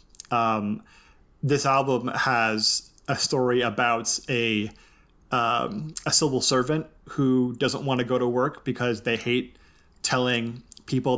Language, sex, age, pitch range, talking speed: English, male, 30-49, 115-130 Hz, 130 wpm